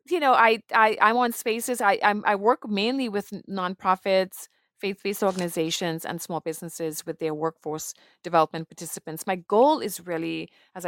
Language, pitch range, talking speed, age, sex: English, 160-195 Hz, 160 wpm, 30-49, female